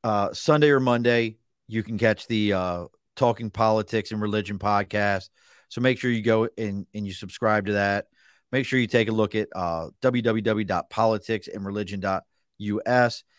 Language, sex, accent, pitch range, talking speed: English, male, American, 105-115 Hz, 150 wpm